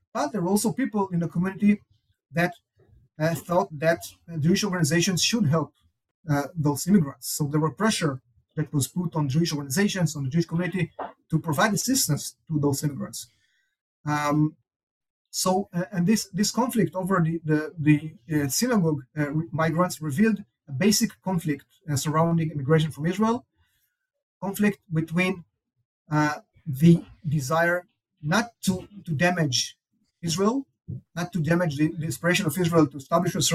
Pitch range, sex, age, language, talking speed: 150-185 Hz, male, 30-49, English, 145 wpm